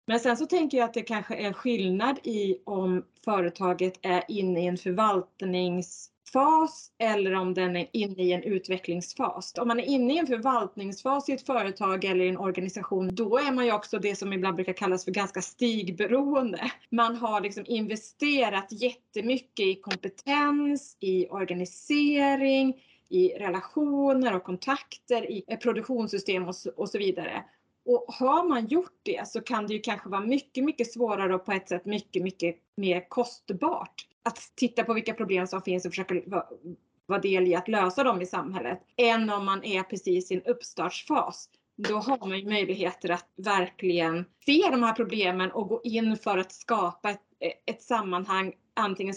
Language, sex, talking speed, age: Swedish, female, 170 wpm, 30-49